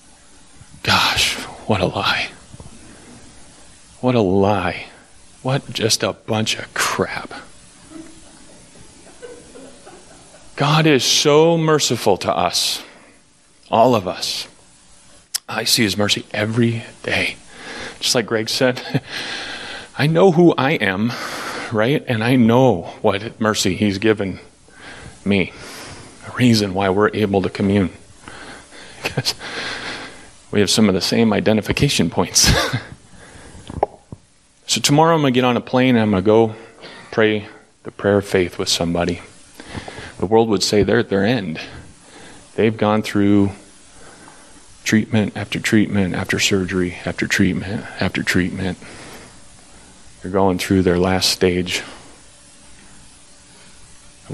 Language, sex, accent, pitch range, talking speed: English, male, American, 95-120 Hz, 120 wpm